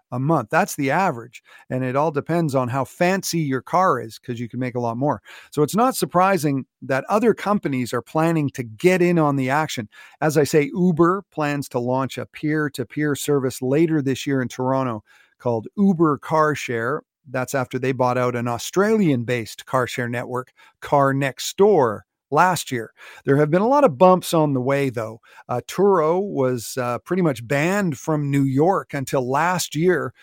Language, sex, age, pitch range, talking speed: English, male, 50-69, 130-170 Hz, 190 wpm